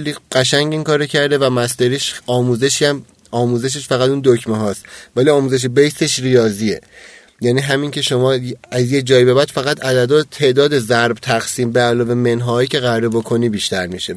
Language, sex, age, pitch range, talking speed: Persian, male, 30-49, 120-155 Hz, 160 wpm